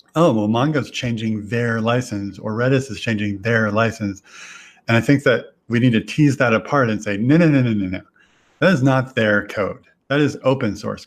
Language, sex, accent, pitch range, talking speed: English, male, American, 105-135 Hz, 215 wpm